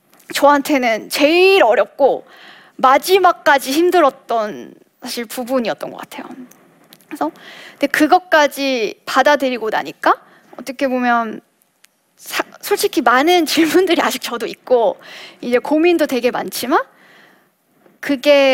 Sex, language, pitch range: female, Korean, 240-330 Hz